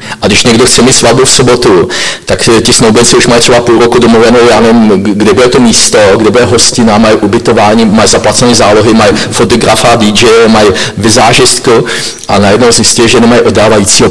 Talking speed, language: 180 wpm, Czech